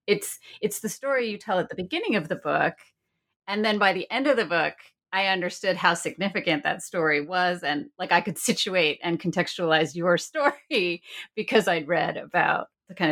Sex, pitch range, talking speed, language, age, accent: female, 165-215 Hz, 190 wpm, English, 30-49, American